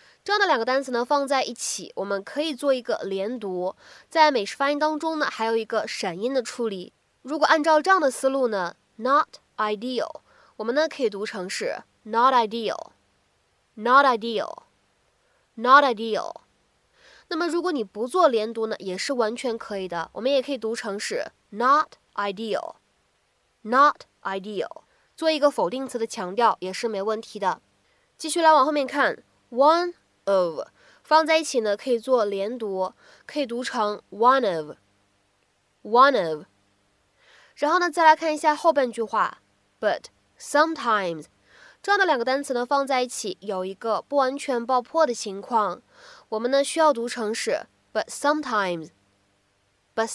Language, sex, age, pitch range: Chinese, female, 20-39, 200-290 Hz